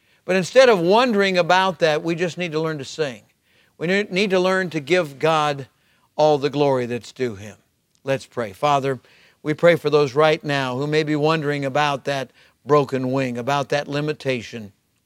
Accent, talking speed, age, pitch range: American, 185 wpm, 50-69, 135-160 Hz